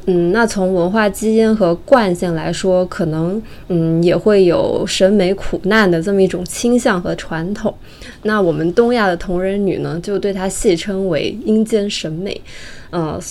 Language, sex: Chinese, female